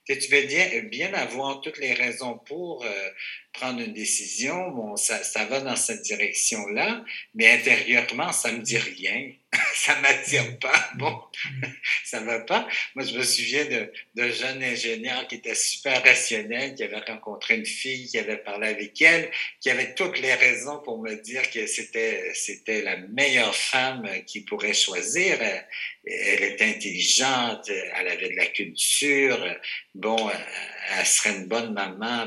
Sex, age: male, 60-79